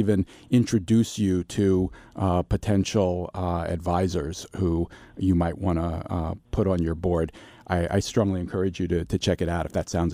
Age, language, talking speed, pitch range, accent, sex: 40-59, English, 185 wpm, 95-135 Hz, American, male